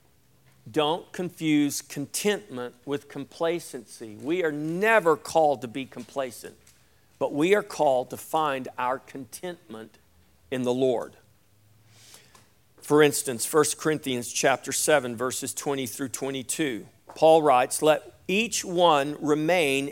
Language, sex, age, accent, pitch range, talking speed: English, male, 50-69, American, 125-185 Hz, 120 wpm